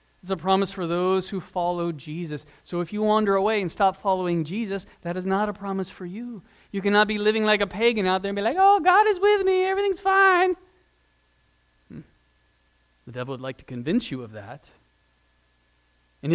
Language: English